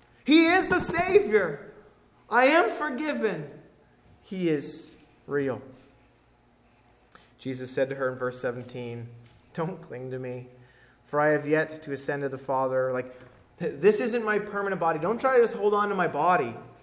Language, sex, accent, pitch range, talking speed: English, male, American, 135-195 Hz, 160 wpm